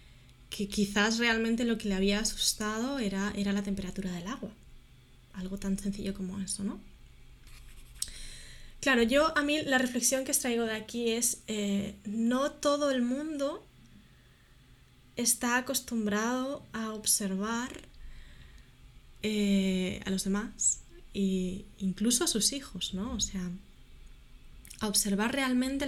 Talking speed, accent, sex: 130 wpm, Spanish, female